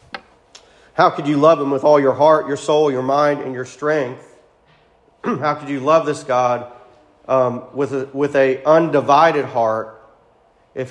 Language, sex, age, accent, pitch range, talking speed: English, male, 40-59, American, 145-185 Hz, 165 wpm